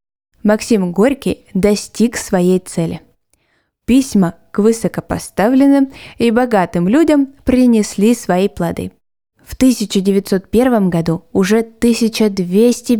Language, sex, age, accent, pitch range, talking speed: Russian, female, 20-39, native, 180-230 Hz, 90 wpm